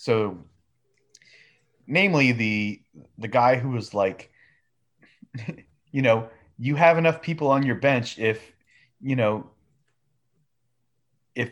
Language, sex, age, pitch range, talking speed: English, male, 30-49, 100-140 Hz, 110 wpm